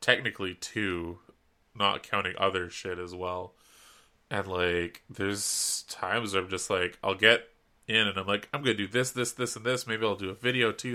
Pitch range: 90-115 Hz